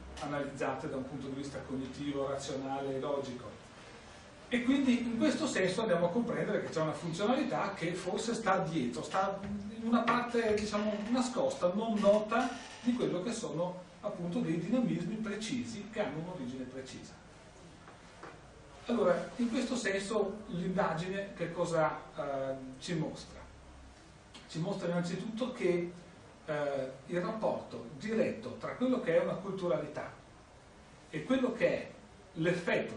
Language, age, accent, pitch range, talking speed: Italian, 40-59, native, 145-230 Hz, 135 wpm